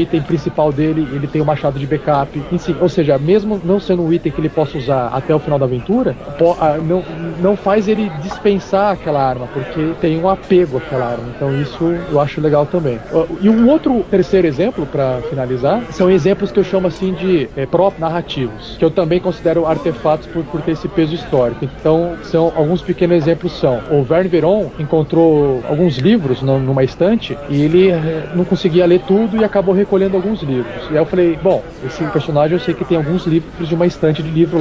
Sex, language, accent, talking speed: male, Portuguese, Brazilian, 205 wpm